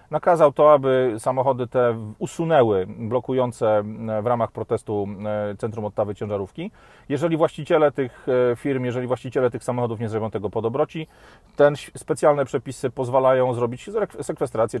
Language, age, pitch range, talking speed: Polish, 40-59, 115-145 Hz, 130 wpm